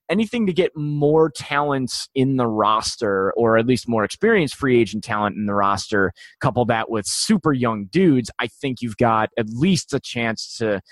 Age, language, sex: 20-39, English, male